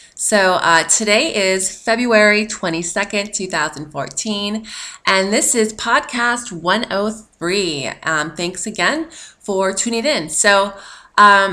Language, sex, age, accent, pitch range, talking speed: English, female, 20-39, American, 170-220 Hz, 105 wpm